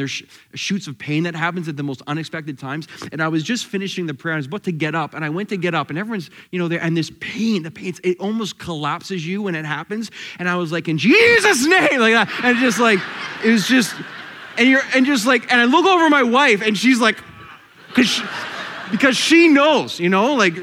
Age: 30-49